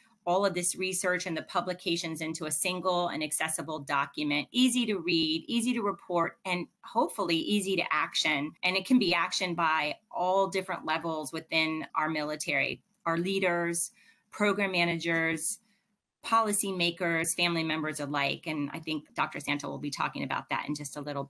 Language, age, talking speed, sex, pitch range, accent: English, 30-49, 165 wpm, female, 165-210 Hz, American